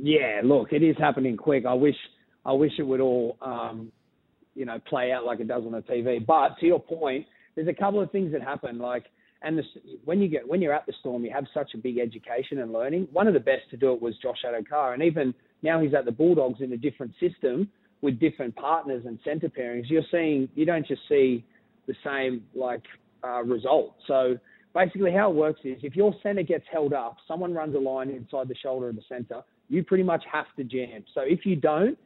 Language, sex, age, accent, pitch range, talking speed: English, male, 30-49, Australian, 130-170 Hz, 230 wpm